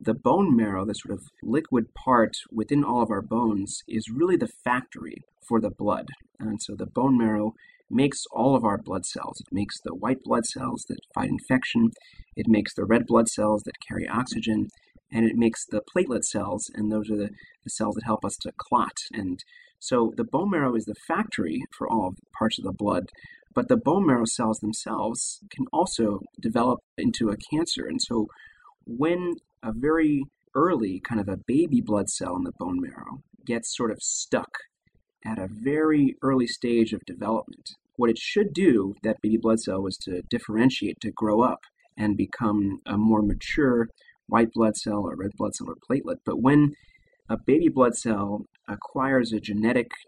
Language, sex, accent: English, male, American